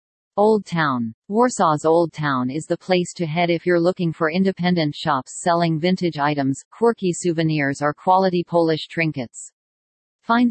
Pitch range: 150-180 Hz